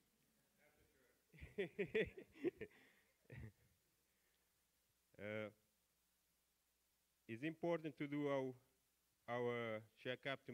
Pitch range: 110-130 Hz